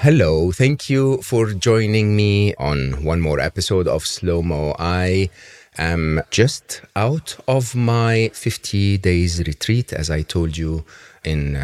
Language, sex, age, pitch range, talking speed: English, male, 40-59, 80-105 Hz, 140 wpm